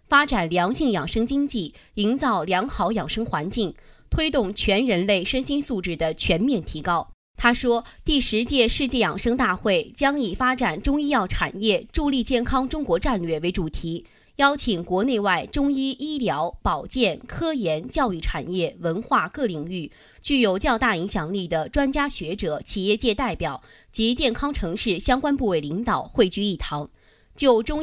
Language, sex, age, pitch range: Chinese, female, 20-39, 185-265 Hz